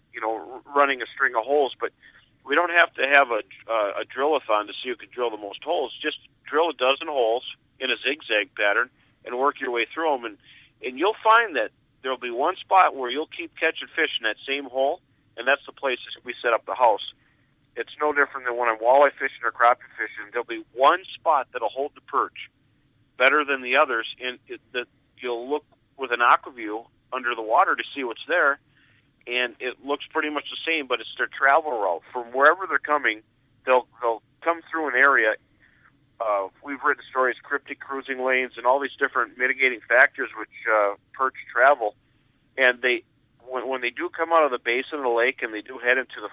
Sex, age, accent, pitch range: male, 50-69, American, 120-140 Hz